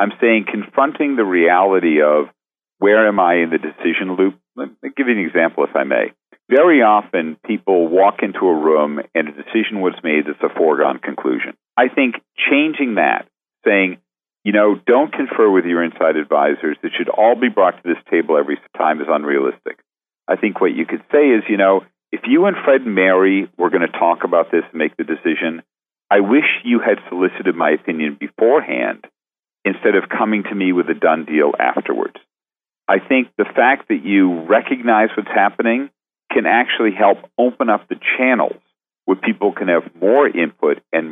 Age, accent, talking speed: 50-69, American, 190 wpm